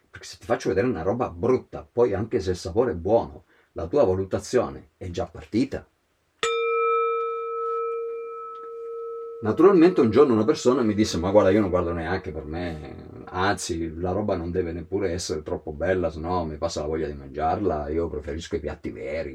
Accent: native